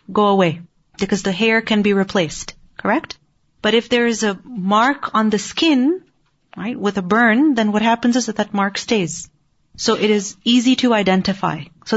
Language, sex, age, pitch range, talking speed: English, female, 30-49, 190-235 Hz, 185 wpm